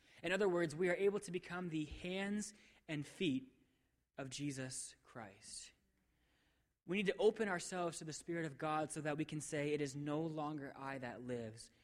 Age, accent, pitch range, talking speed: 20-39, American, 130-170 Hz, 190 wpm